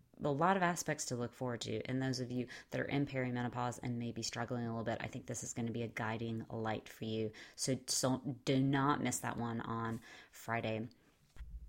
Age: 30-49